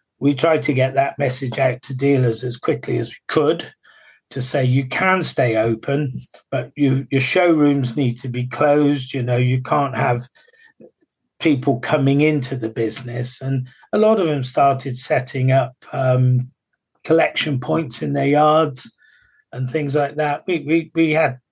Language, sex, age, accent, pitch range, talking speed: English, male, 40-59, British, 130-150 Hz, 165 wpm